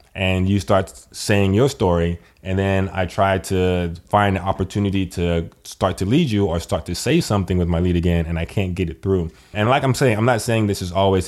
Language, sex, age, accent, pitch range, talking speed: English, male, 20-39, American, 90-110 Hz, 235 wpm